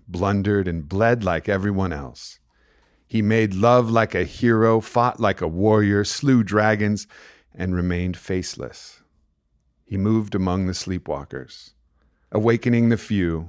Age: 50-69